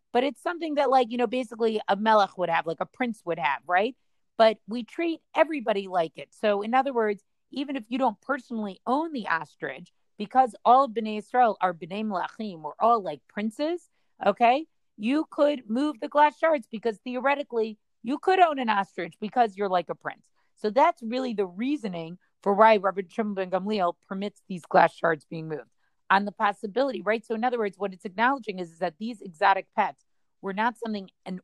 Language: English